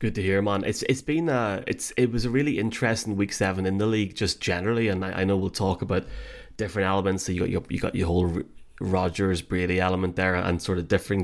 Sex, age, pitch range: male, 20-39, 95-105 Hz